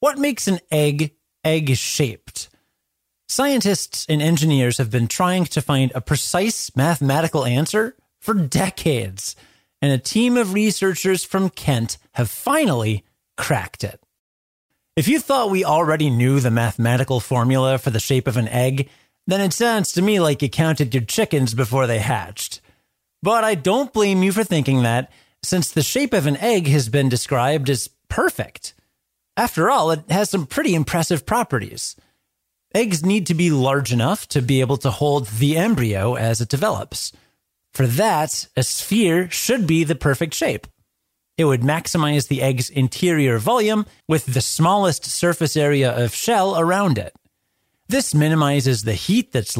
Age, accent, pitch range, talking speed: 30-49, American, 130-180 Hz, 160 wpm